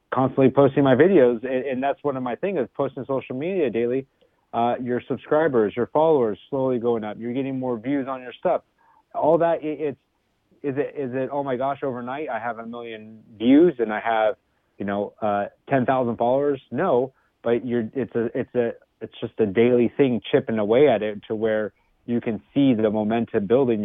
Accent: American